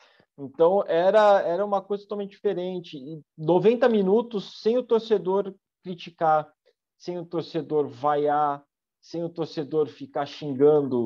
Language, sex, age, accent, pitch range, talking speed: Portuguese, male, 40-59, Brazilian, 130-185 Hz, 125 wpm